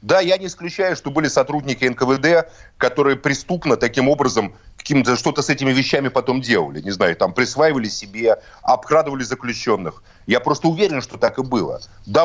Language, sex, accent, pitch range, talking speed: Russian, male, native, 130-160 Hz, 160 wpm